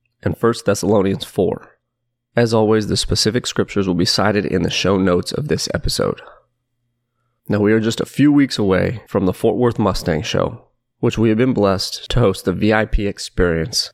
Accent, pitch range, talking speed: American, 95-120 Hz, 185 wpm